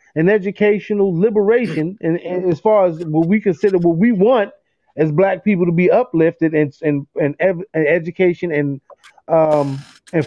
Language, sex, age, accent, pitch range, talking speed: English, male, 30-49, American, 180-240 Hz, 170 wpm